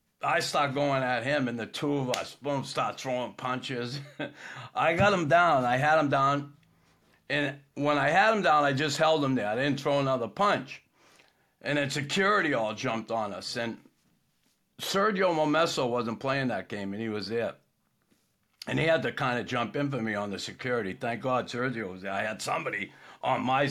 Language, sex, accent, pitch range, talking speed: English, male, American, 120-150 Hz, 200 wpm